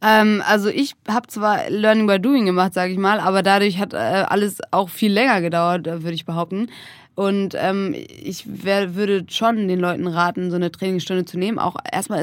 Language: German